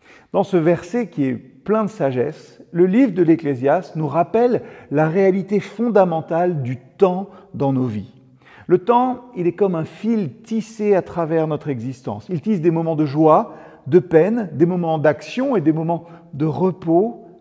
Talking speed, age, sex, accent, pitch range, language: 170 wpm, 40-59, male, French, 150-200 Hz, French